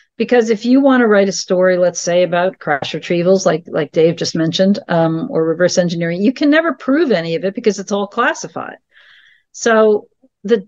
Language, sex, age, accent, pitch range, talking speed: English, female, 50-69, American, 190-250 Hz, 195 wpm